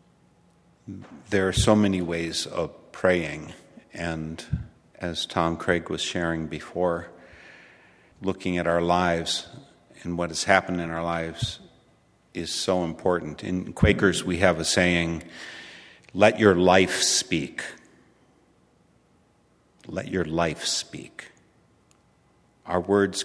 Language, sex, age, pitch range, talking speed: English, male, 50-69, 85-95 Hz, 115 wpm